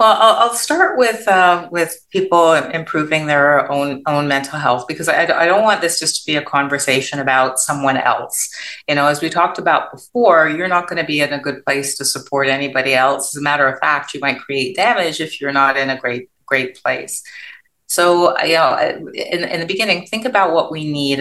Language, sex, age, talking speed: English, female, 30-49, 215 wpm